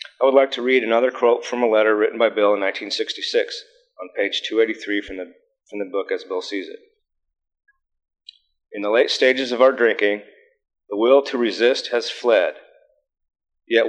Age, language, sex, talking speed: 40-59, English, male, 175 wpm